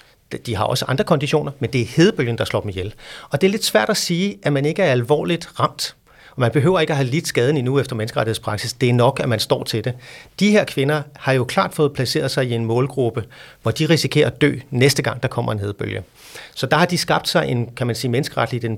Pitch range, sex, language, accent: 120-165 Hz, male, Danish, native